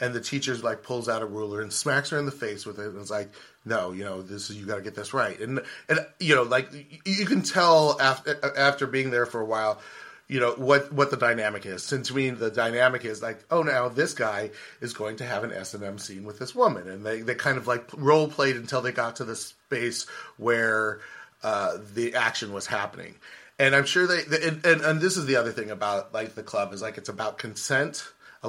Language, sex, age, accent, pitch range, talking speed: English, male, 30-49, American, 115-145 Hz, 245 wpm